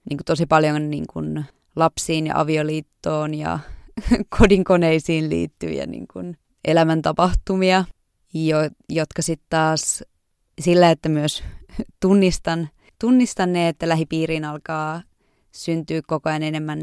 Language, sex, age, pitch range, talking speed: Finnish, female, 20-39, 150-175 Hz, 105 wpm